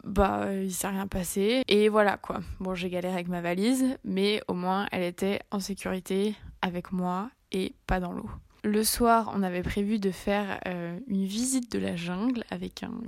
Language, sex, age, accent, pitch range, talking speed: French, female, 20-39, French, 185-225 Hz, 195 wpm